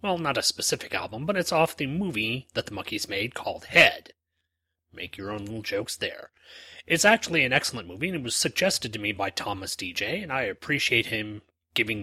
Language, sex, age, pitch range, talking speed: English, male, 30-49, 100-135 Hz, 205 wpm